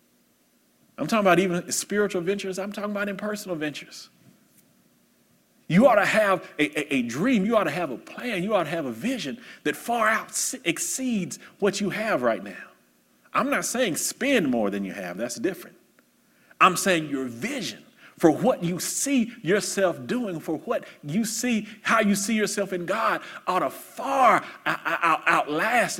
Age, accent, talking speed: 40-59, American, 170 wpm